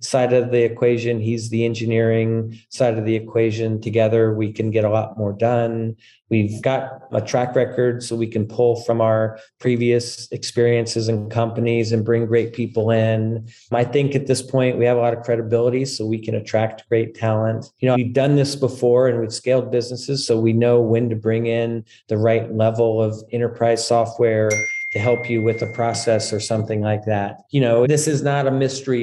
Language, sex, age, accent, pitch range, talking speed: English, male, 40-59, American, 110-125 Hz, 200 wpm